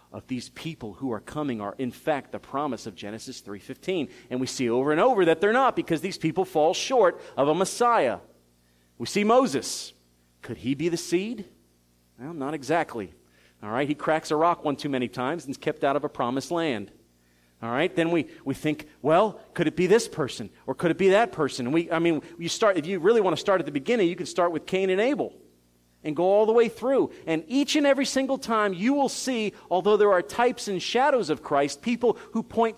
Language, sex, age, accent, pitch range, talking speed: English, male, 40-59, American, 125-205 Hz, 230 wpm